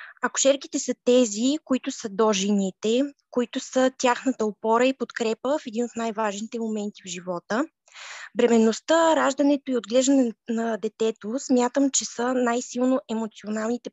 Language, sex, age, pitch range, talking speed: Bulgarian, female, 20-39, 225-270 Hz, 135 wpm